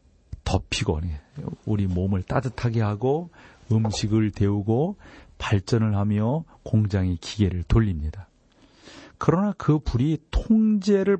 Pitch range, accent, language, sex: 90-120 Hz, native, Korean, male